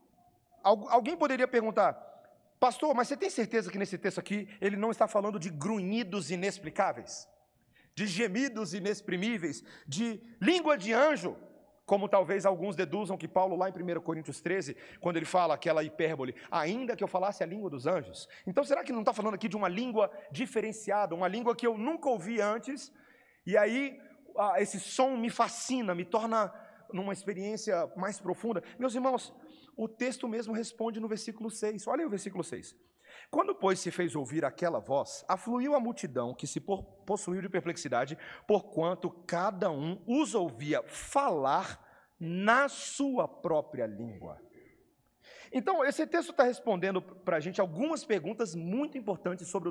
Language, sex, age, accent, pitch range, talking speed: Portuguese, male, 40-59, Brazilian, 185-250 Hz, 160 wpm